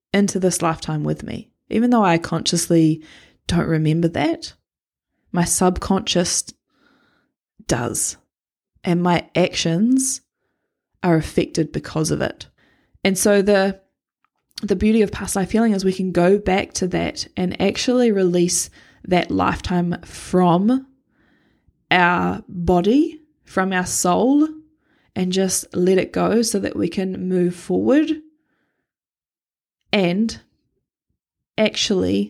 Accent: Australian